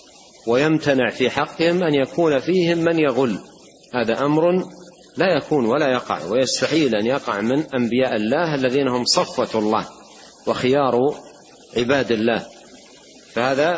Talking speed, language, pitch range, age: 120 wpm, Arabic, 115-155 Hz, 40-59